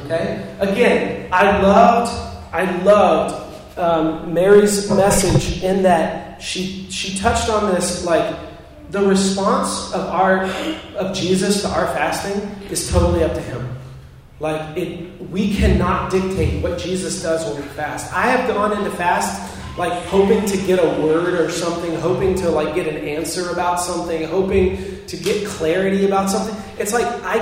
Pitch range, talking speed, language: 160-195 Hz, 160 wpm, English